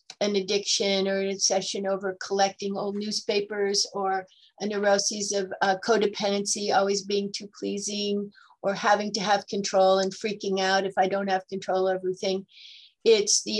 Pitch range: 190-210 Hz